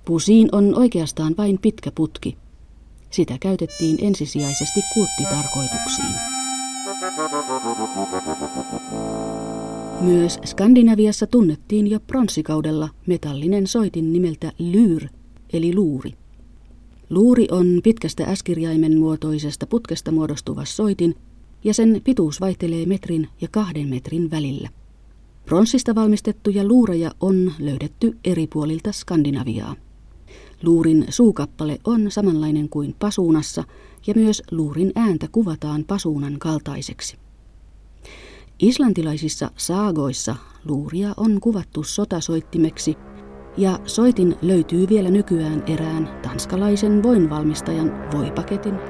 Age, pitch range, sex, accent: 30-49, 150-205 Hz, female, native